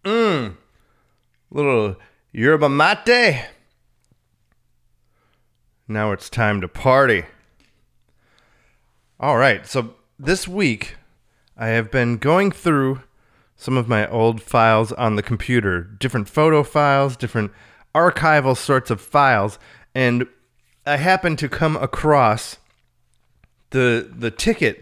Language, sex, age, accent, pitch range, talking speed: English, male, 30-49, American, 115-150 Hz, 105 wpm